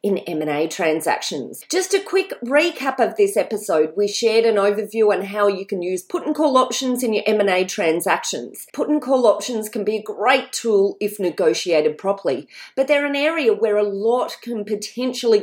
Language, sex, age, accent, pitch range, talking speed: English, female, 30-49, Australian, 185-270 Hz, 185 wpm